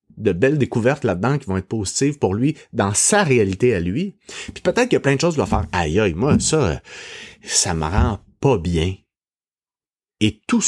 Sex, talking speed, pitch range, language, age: male, 210 wpm, 105-150 Hz, French, 30-49